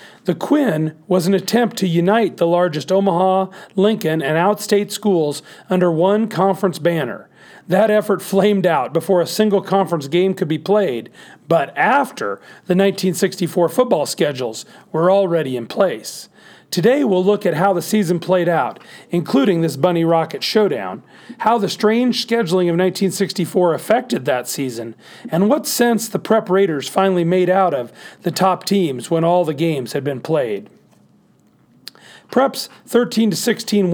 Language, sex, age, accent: English, male, 40-59, American